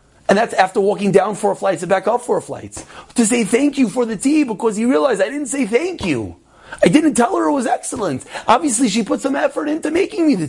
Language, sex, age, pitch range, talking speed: English, male, 30-49, 190-265 Hz, 245 wpm